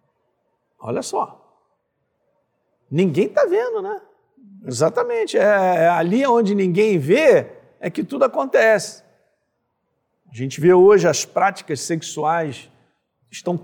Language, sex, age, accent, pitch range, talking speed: Portuguese, male, 50-69, Brazilian, 155-240 Hz, 100 wpm